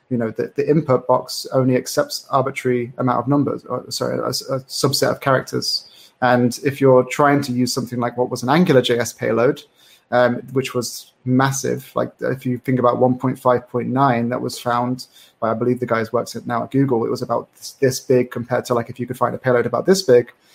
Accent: British